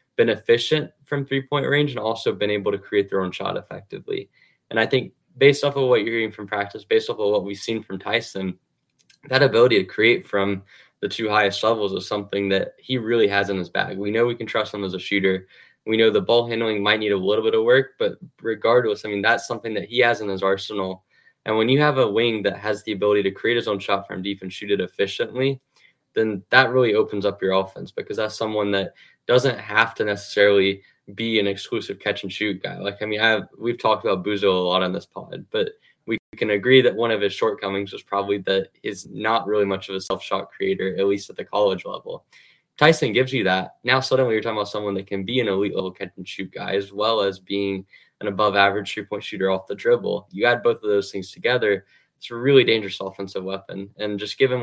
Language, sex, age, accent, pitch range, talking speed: English, male, 10-29, American, 100-120 Hz, 230 wpm